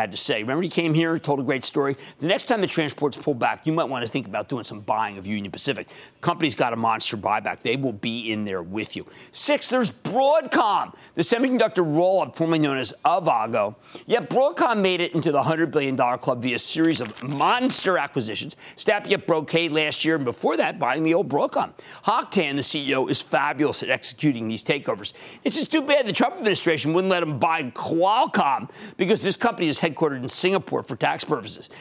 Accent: American